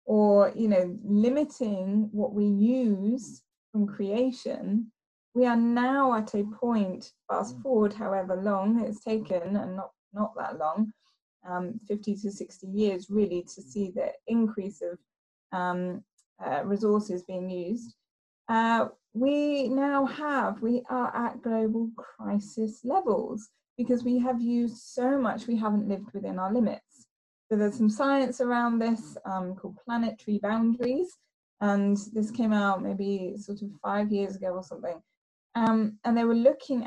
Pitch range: 205-250 Hz